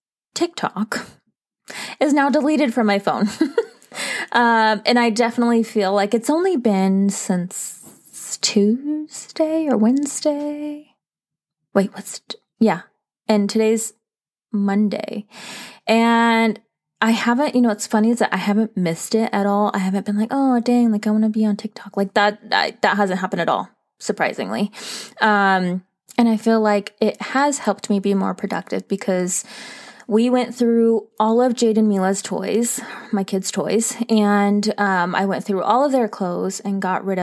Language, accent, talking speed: English, American, 160 wpm